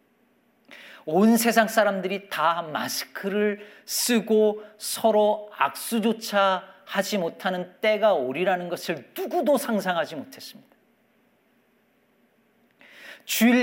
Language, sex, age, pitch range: Korean, male, 40-59, 165-230 Hz